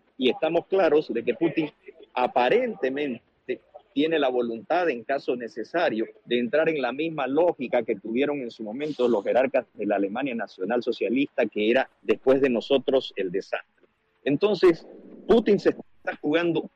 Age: 50-69